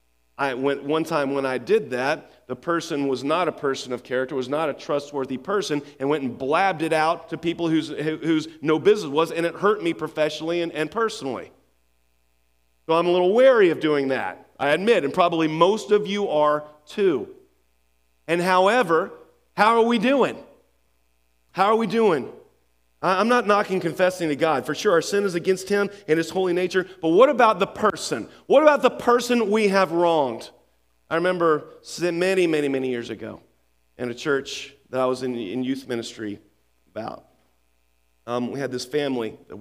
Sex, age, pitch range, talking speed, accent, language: male, 40-59, 115-170 Hz, 185 wpm, American, English